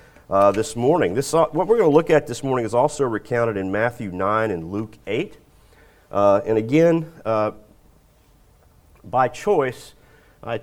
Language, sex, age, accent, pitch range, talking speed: English, male, 40-59, American, 100-145 Hz, 160 wpm